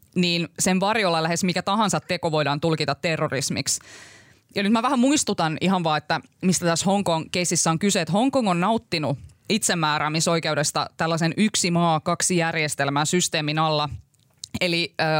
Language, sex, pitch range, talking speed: Finnish, female, 155-185 Hz, 140 wpm